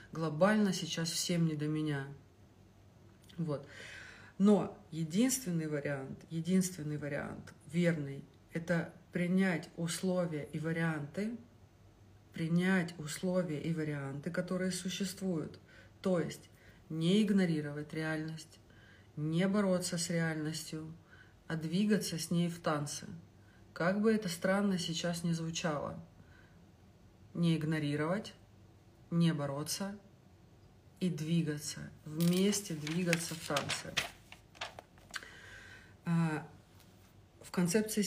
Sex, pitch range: female, 150-180 Hz